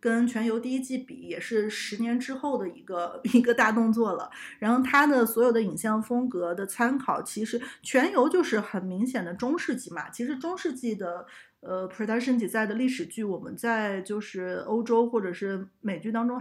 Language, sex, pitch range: Chinese, female, 205-255 Hz